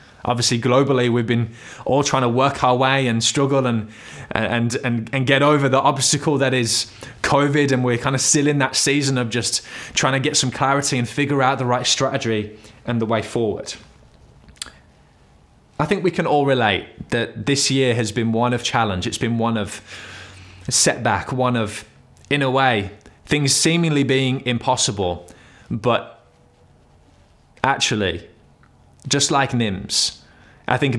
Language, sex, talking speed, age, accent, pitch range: English, male, 160 wpm, 20-39, British, 115-135 Hz